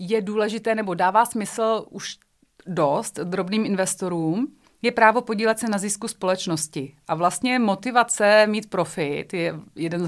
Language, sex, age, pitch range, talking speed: Czech, female, 30-49, 180-225 Hz, 145 wpm